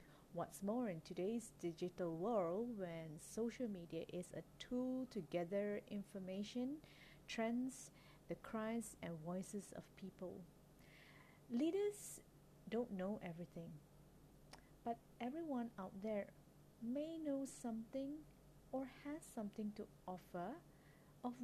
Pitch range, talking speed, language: 165-230 Hz, 110 wpm, English